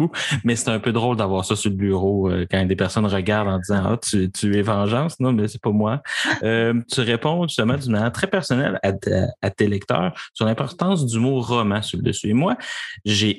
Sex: male